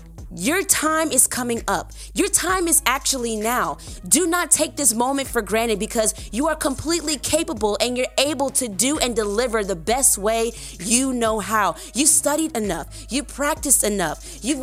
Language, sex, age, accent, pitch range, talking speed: English, female, 20-39, American, 205-295 Hz, 170 wpm